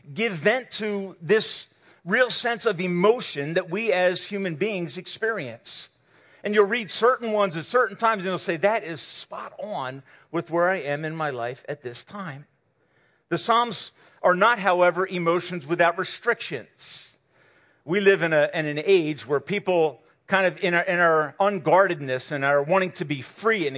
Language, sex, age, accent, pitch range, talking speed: English, male, 50-69, American, 160-215 Hz, 170 wpm